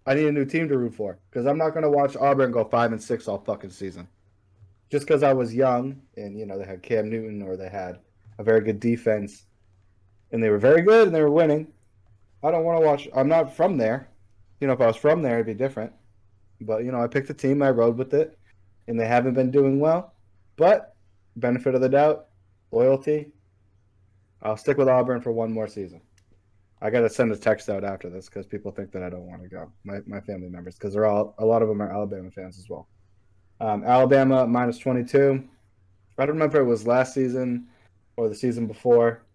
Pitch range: 100-125 Hz